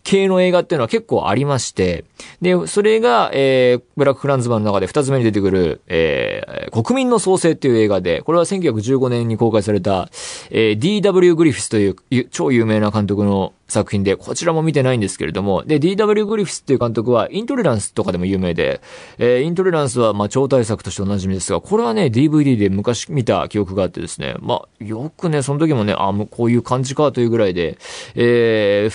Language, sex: Japanese, male